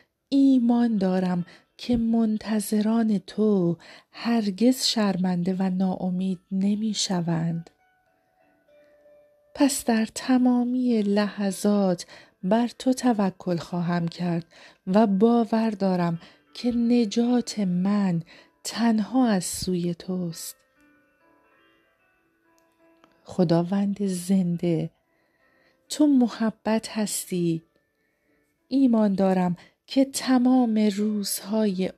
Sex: female